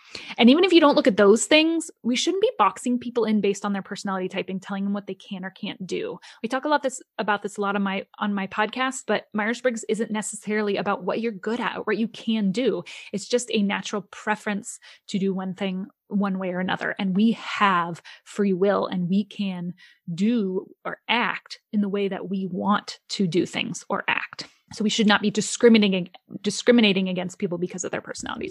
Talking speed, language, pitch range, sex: 220 wpm, English, 195-230 Hz, female